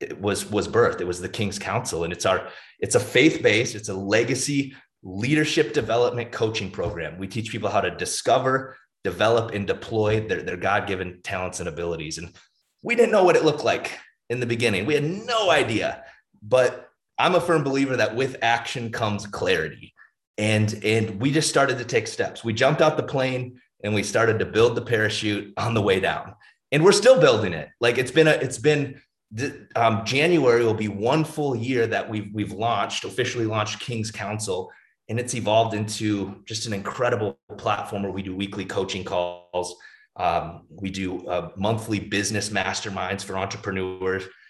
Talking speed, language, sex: 180 wpm, English, male